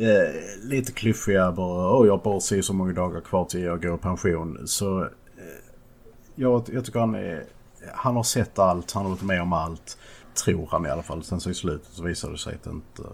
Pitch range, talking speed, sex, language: 90-115 Hz, 215 wpm, male, Swedish